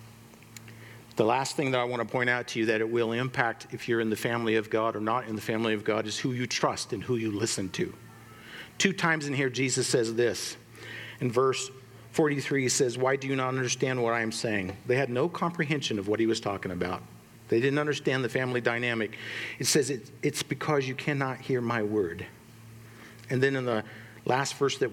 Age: 50-69